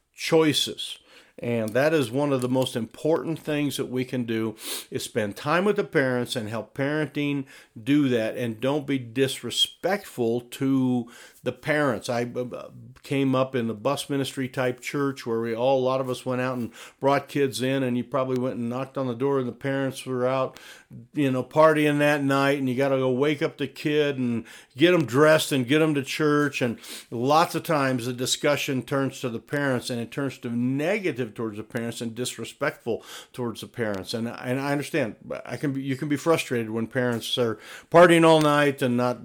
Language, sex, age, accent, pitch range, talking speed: English, male, 50-69, American, 115-140 Hz, 205 wpm